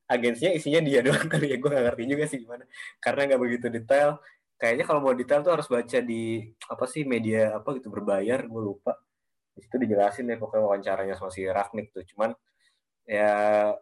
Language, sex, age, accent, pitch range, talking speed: Indonesian, male, 20-39, native, 105-130 Hz, 185 wpm